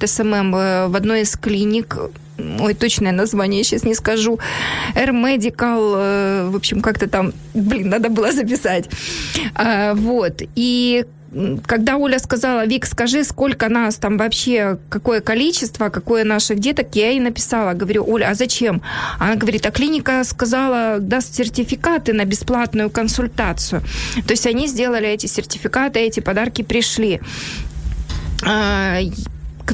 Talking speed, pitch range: 130 wpm, 205-240 Hz